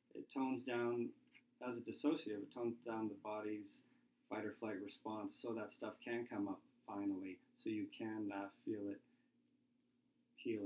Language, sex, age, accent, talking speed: English, male, 30-49, American, 165 wpm